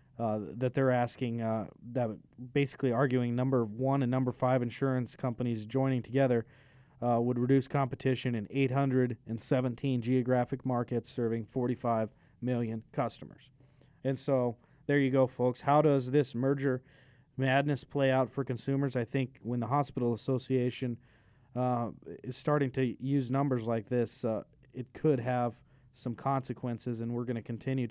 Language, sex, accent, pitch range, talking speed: English, male, American, 120-135 Hz, 150 wpm